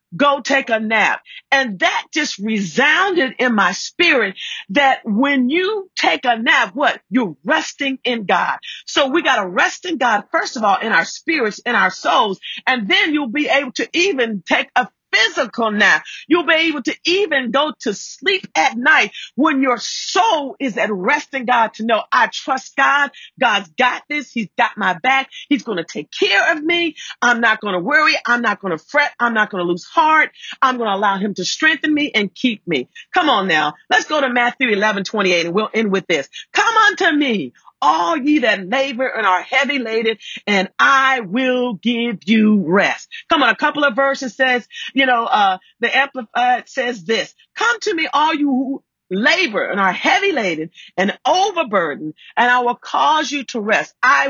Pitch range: 220-310 Hz